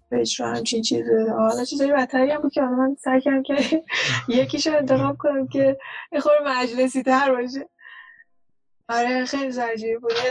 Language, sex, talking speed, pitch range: Persian, female, 170 wpm, 225-275 Hz